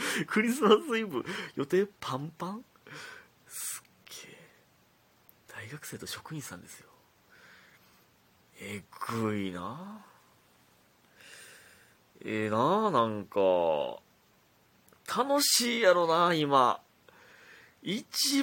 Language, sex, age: Japanese, male, 30-49